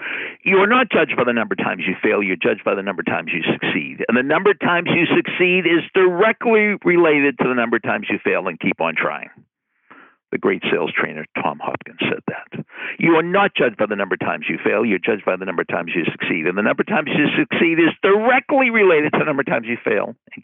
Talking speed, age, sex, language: 255 wpm, 60-79, male, English